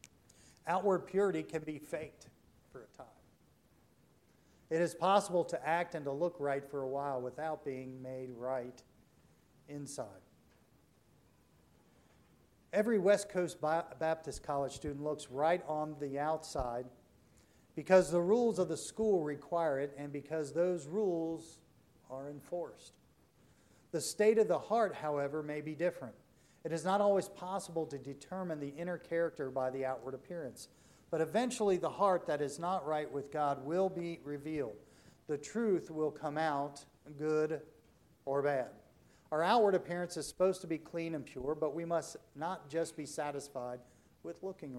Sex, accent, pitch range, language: male, American, 140-175 Hz, English